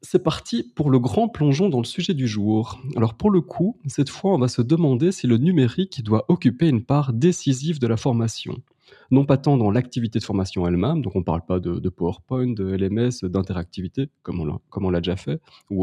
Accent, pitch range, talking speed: French, 100-140 Hz, 225 wpm